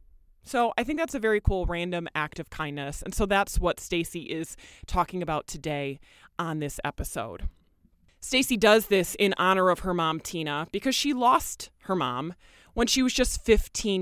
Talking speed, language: 180 wpm, English